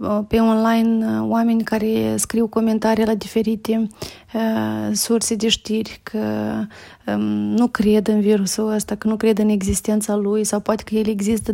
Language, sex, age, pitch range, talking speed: Romanian, female, 30-49, 210-225 Hz, 145 wpm